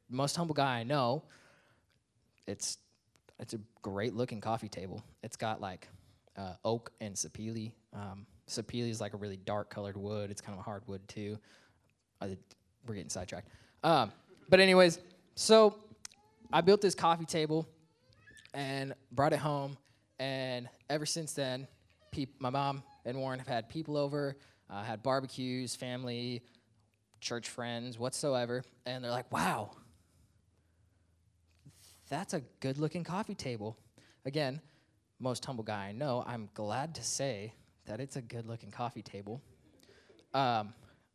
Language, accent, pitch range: English, American, 105-140 Hz